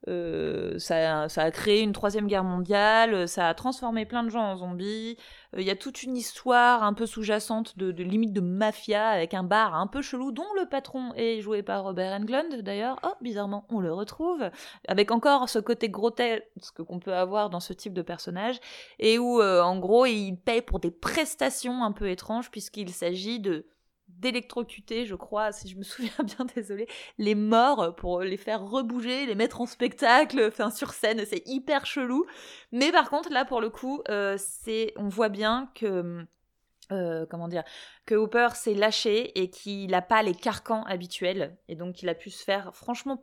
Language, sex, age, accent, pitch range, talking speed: French, female, 20-39, French, 190-240 Hz, 195 wpm